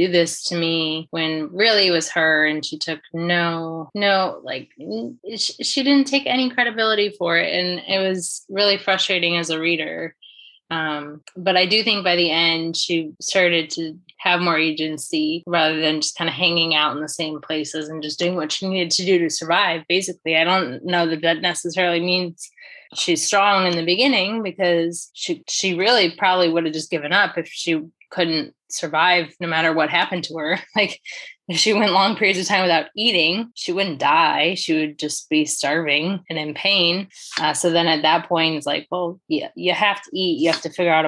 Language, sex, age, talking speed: English, female, 20-39, 200 wpm